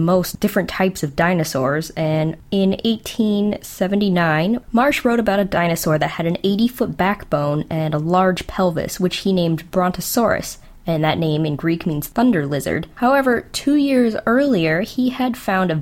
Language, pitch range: English, 160-205 Hz